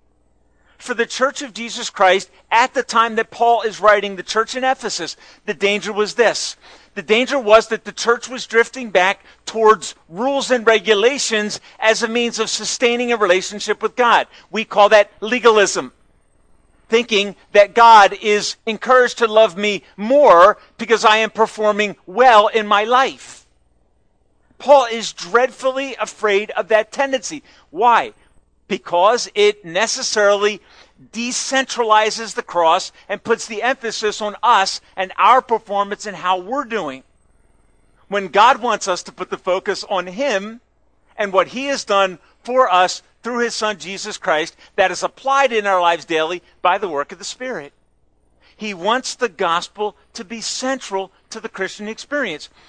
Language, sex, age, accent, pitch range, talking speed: English, male, 40-59, American, 195-240 Hz, 155 wpm